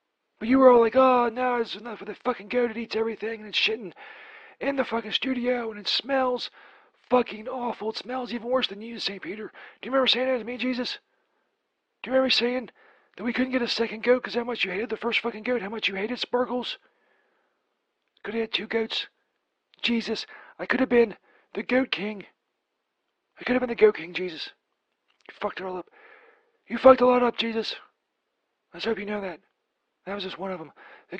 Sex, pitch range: male, 225-270 Hz